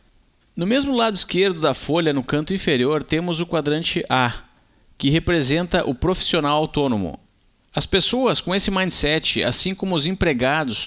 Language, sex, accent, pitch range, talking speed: Portuguese, male, Brazilian, 150-195 Hz, 150 wpm